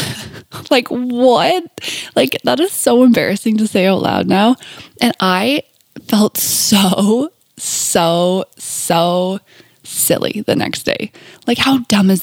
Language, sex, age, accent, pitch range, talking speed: English, female, 20-39, American, 180-250 Hz, 130 wpm